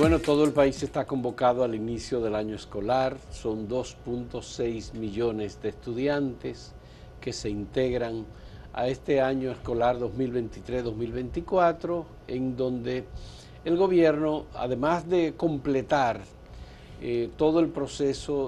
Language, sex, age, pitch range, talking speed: Spanish, male, 50-69, 110-140 Hz, 115 wpm